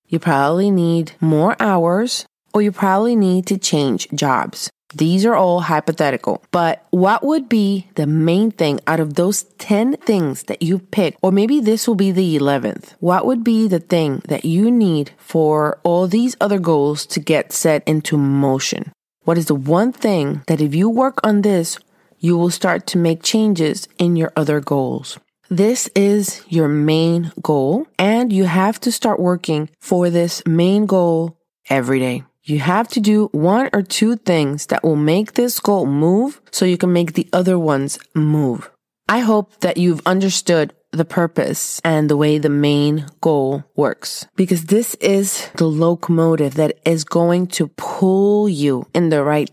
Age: 30-49